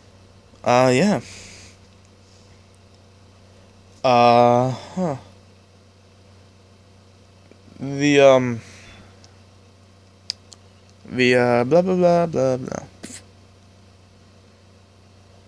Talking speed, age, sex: 45 wpm, 20-39, male